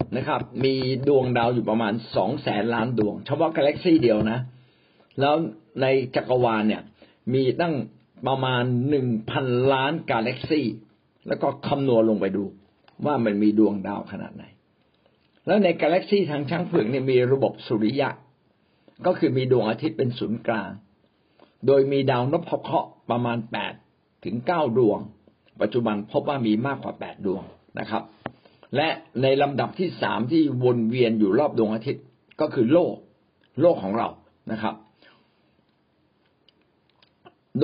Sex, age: male, 60-79